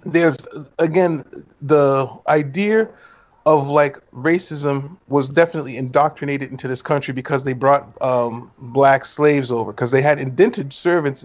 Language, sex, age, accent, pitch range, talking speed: English, male, 30-49, American, 135-155 Hz, 135 wpm